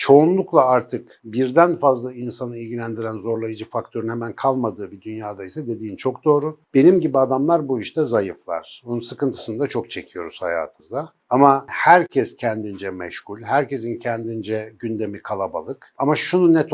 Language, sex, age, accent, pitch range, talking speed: Turkish, male, 60-79, native, 110-140 Hz, 140 wpm